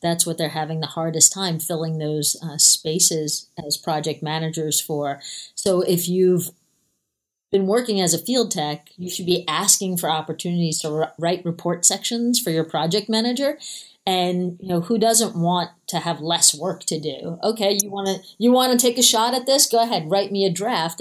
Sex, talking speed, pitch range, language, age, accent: female, 195 wpm, 160-195 Hz, English, 30-49, American